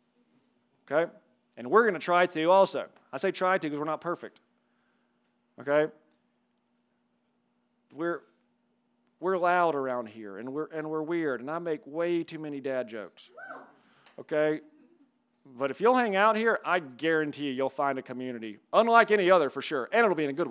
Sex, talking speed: male, 170 wpm